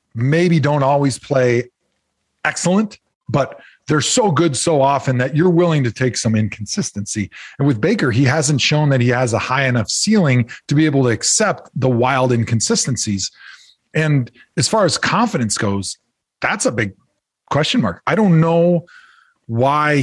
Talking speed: 160 wpm